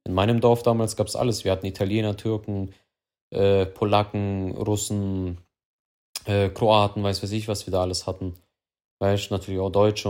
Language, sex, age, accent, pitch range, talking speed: German, male, 20-39, German, 95-110 Hz, 165 wpm